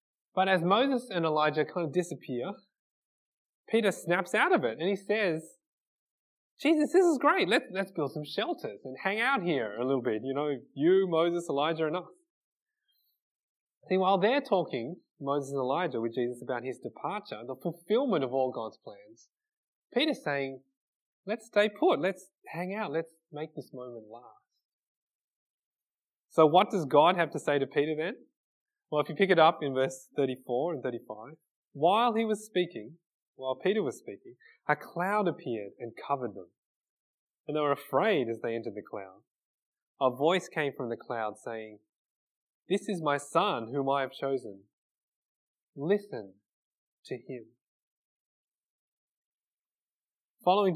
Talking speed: 155 wpm